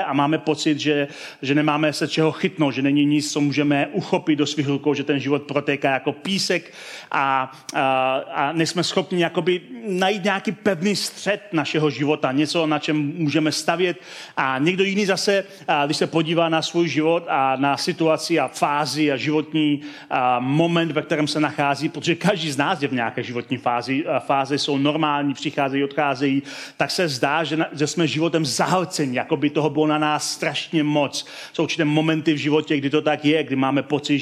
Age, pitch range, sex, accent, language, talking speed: 30-49, 145-170 Hz, male, native, Czech, 185 wpm